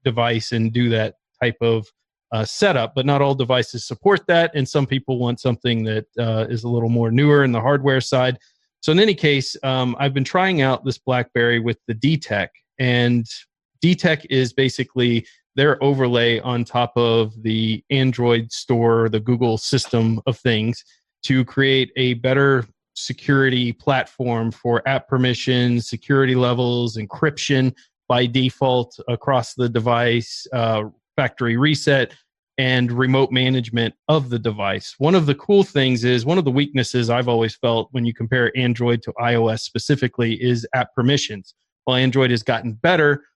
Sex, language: male, English